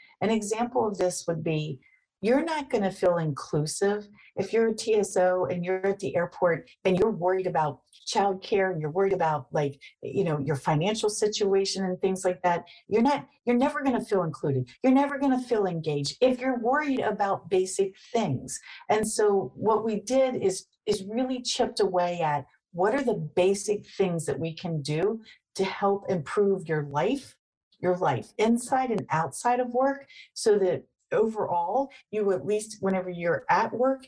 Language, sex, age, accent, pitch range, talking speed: English, female, 50-69, American, 170-225 Hz, 180 wpm